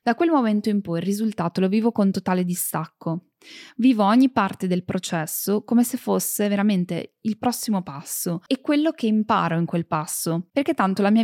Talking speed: 185 wpm